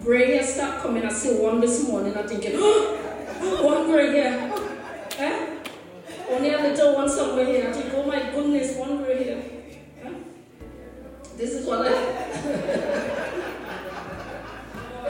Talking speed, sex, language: 145 wpm, female, English